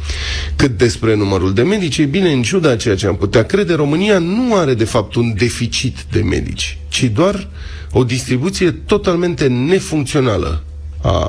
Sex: male